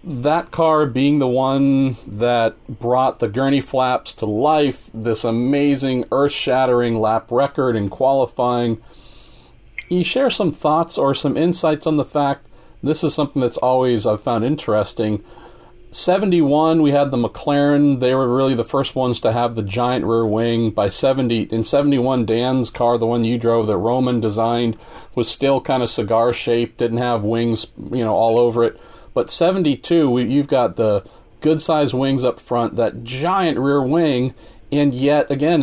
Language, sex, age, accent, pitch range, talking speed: English, male, 40-59, American, 120-155 Hz, 160 wpm